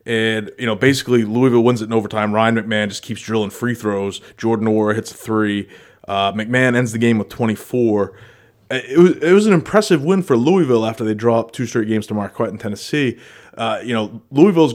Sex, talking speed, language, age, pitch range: male, 210 wpm, English, 20-39, 105-120 Hz